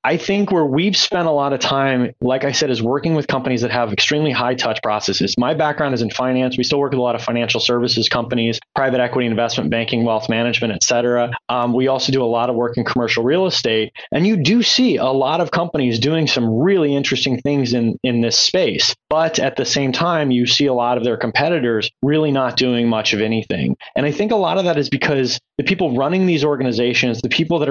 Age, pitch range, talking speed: 20-39, 120-160 Hz, 230 wpm